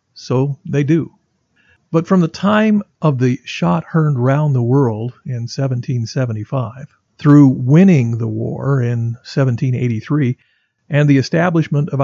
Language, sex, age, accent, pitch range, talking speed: English, male, 50-69, American, 125-155 Hz, 130 wpm